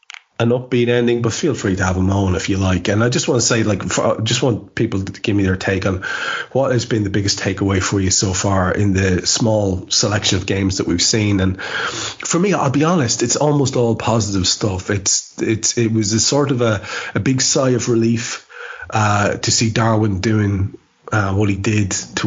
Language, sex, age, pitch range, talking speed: English, male, 30-49, 95-115 Hz, 225 wpm